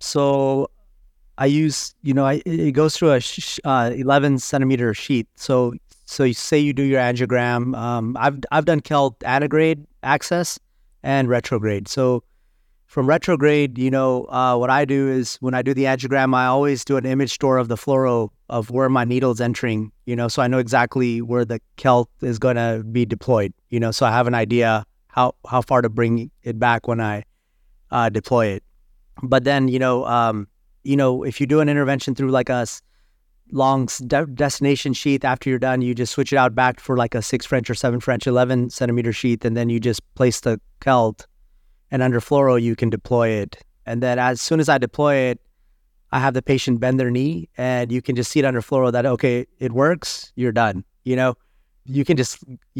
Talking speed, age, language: 205 wpm, 30-49, English